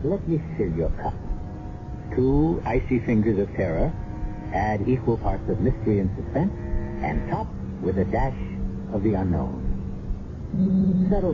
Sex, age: male, 60-79